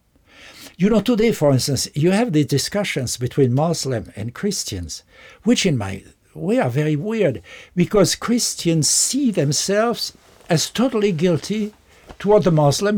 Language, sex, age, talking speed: English, male, 60-79, 140 wpm